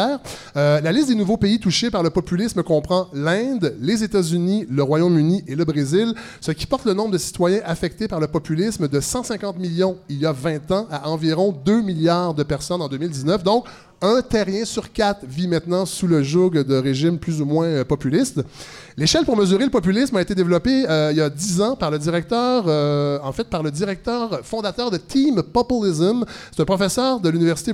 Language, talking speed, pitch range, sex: French, 205 wpm, 155-205 Hz, male